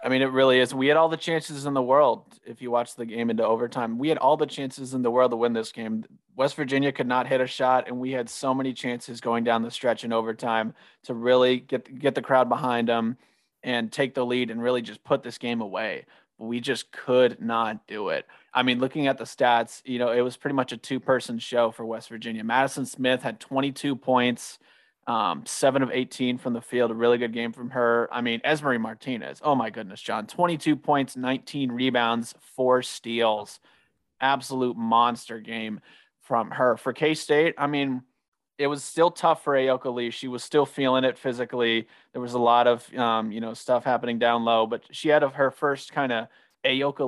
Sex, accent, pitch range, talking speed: male, American, 120-135 Hz, 215 wpm